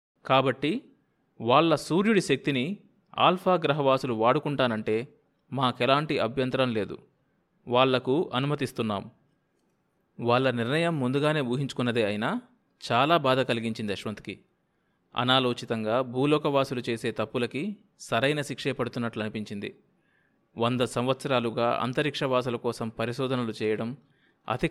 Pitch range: 120-150 Hz